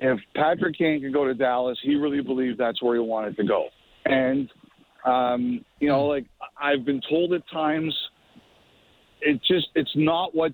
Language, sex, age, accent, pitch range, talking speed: English, male, 50-69, American, 140-170 Hz, 175 wpm